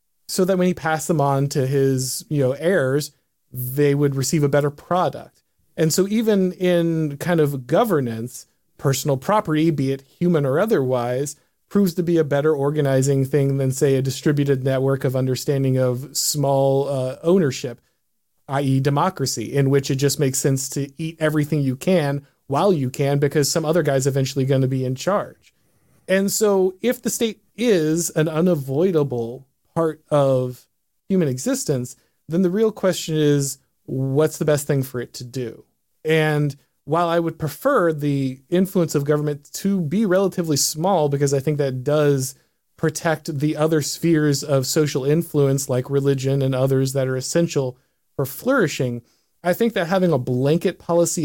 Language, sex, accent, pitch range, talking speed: English, male, American, 135-170 Hz, 165 wpm